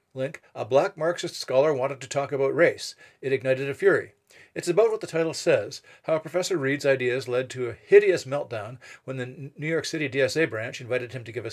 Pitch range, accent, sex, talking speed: 130-170 Hz, American, male, 215 wpm